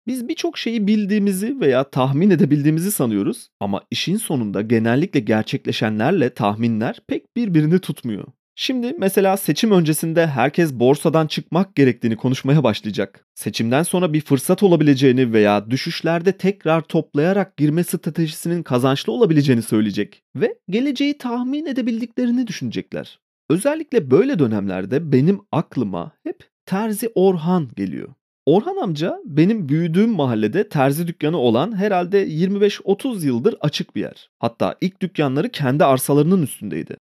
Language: Turkish